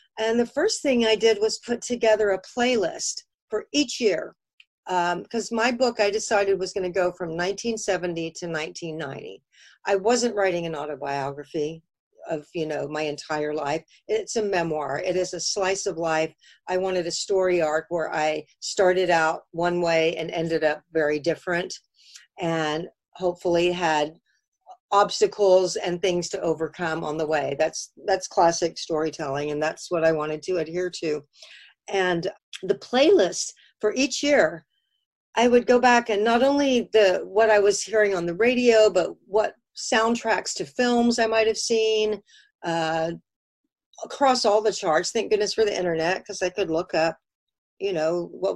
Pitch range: 165-220 Hz